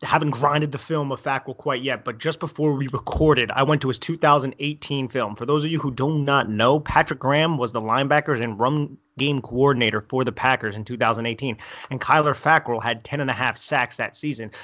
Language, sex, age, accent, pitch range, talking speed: English, male, 30-49, American, 130-155 Hz, 215 wpm